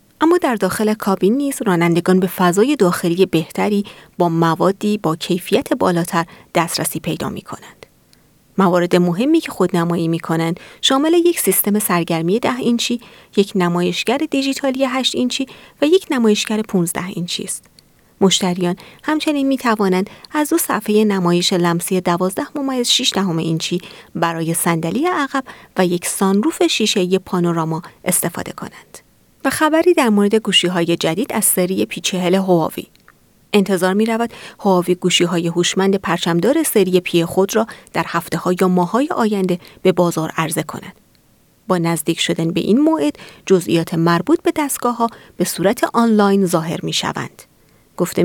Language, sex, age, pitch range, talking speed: Persian, female, 30-49, 175-235 Hz, 145 wpm